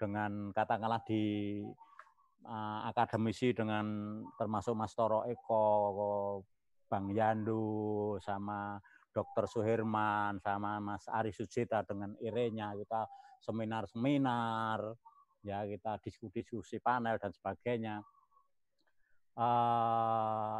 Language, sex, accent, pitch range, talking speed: Indonesian, male, native, 105-125 Hz, 95 wpm